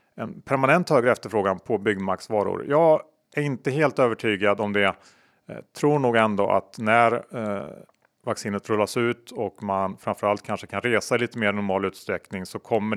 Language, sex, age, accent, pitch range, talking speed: Swedish, male, 30-49, Norwegian, 100-130 Hz, 165 wpm